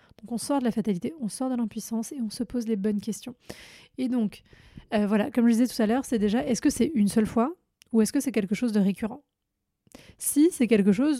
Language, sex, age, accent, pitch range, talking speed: French, female, 30-49, French, 205-255 Hz, 250 wpm